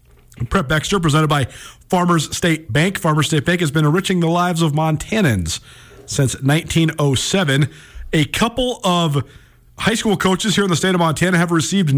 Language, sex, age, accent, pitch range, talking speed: English, male, 40-59, American, 130-185 Hz, 165 wpm